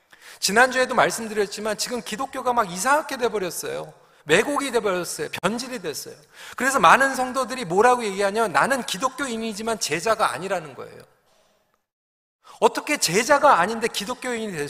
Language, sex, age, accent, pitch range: Korean, male, 40-59, native, 200-255 Hz